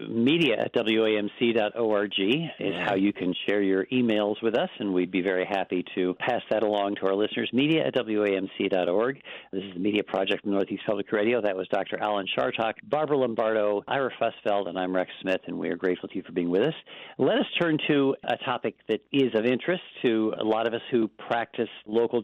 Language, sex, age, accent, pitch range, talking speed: English, male, 50-69, American, 100-120 Hz, 205 wpm